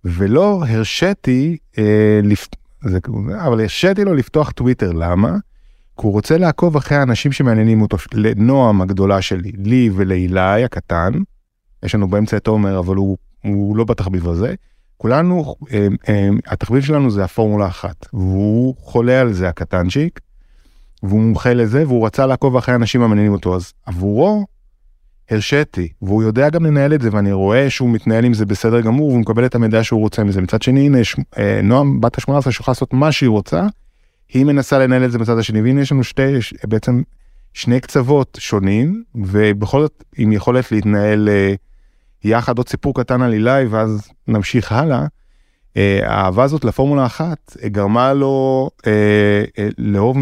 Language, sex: Hebrew, male